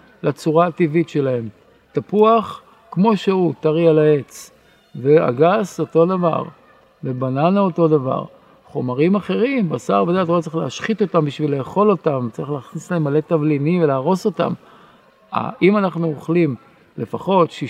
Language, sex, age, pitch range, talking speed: Hebrew, male, 50-69, 135-170 Hz, 120 wpm